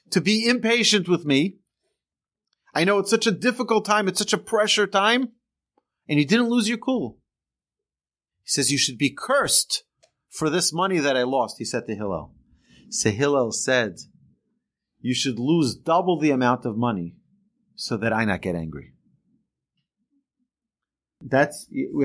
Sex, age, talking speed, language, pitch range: male, 40-59, 160 wpm, English, 120-190 Hz